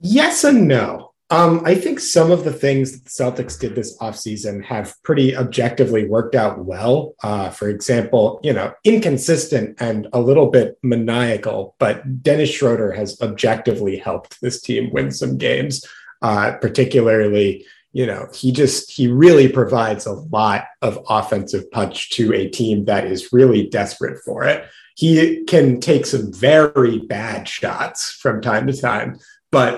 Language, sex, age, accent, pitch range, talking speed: English, male, 30-49, American, 105-145 Hz, 160 wpm